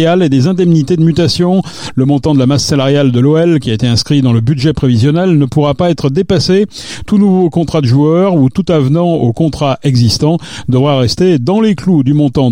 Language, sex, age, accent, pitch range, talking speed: French, male, 40-59, French, 125-165 Hz, 210 wpm